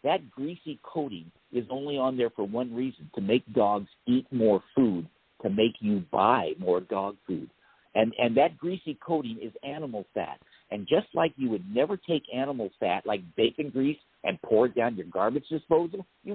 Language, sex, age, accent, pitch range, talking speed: English, male, 50-69, American, 120-160 Hz, 185 wpm